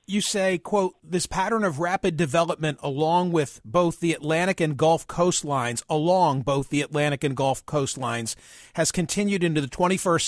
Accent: American